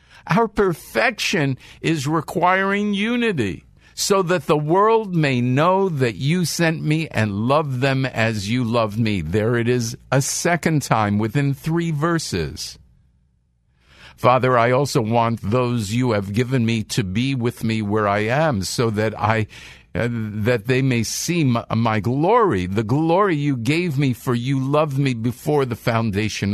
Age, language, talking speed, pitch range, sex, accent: 50-69, English, 160 wpm, 105-150 Hz, male, American